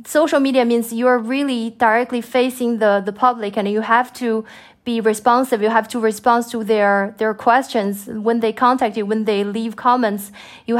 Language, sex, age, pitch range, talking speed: English, female, 20-39, 220-245 Hz, 190 wpm